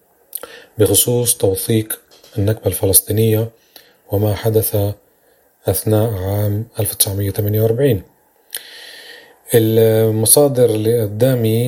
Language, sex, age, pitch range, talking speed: Arabic, male, 30-49, 105-130 Hz, 60 wpm